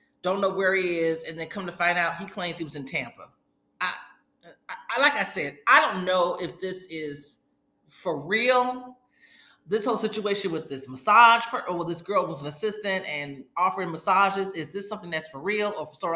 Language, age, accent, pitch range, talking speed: English, 40-59, American, 155-205 Hz, 205 wpm